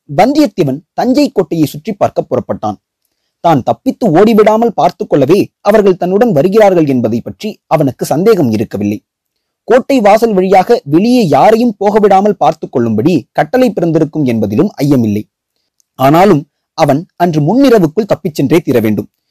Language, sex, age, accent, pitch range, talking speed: Tamil, male, 30-49, native, 120-200 Hz, 120 wpm